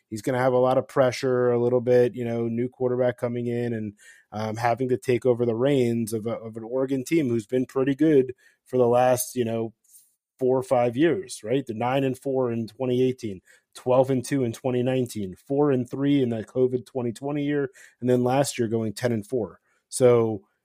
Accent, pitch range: American, 115-130 Hz